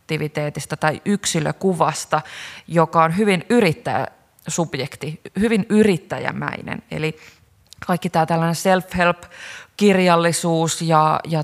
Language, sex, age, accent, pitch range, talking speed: Finnish, female, 30-49, native, 160-200 Hz, 80 wpm